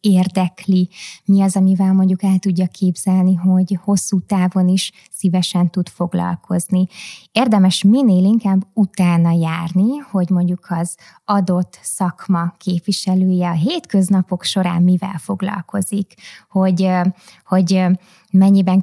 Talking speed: 110 wpm